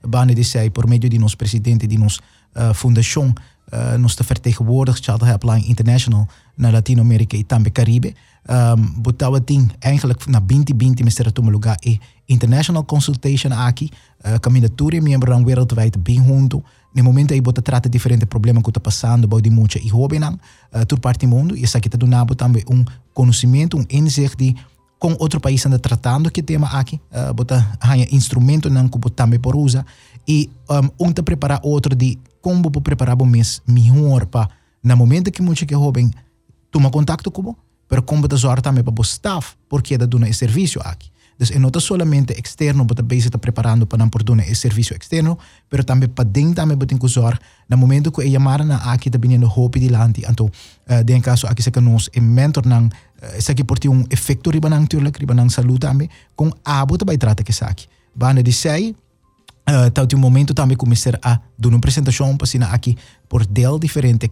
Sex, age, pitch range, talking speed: male, 20-39, 115-140 Hz, 150 wpm